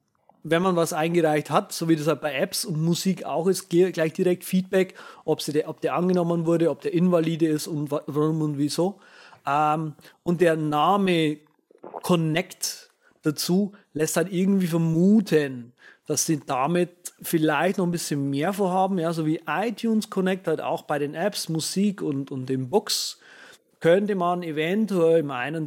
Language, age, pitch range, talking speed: German, 30-49, 150-185 Hz, 165 wpm